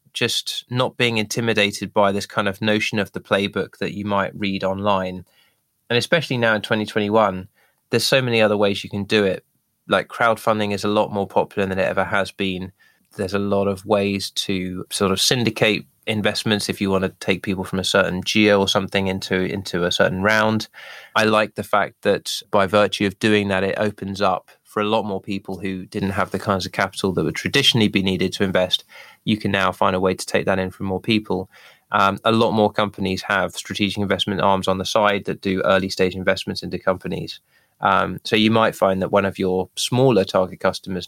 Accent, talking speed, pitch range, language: British, 215 wpm, 95-110 Hz, English